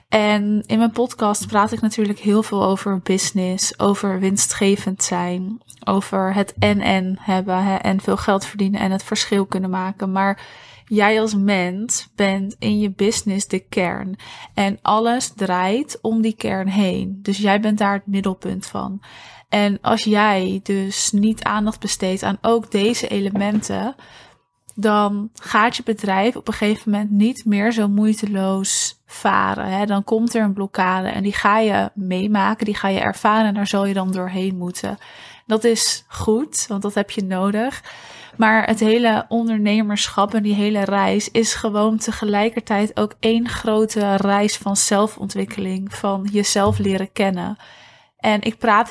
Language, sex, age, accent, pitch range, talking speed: Dutch, female, 20-39, Dutch, 195-215 Hz, 160 wpm